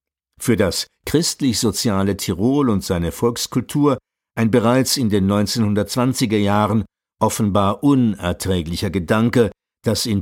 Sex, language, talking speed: male, German, 105 wpm